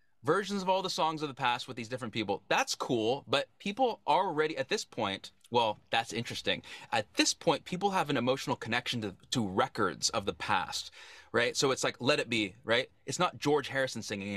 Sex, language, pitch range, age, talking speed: male, English, 115-160 Hz, 30-49, 215 wpm